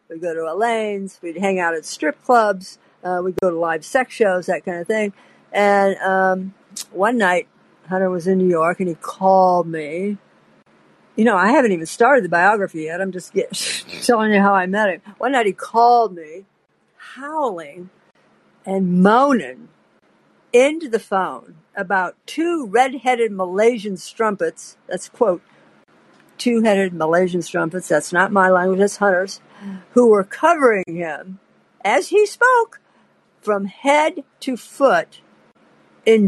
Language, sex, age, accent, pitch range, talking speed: English, female, 60-79, American, 185-245 Hz, 150 wpm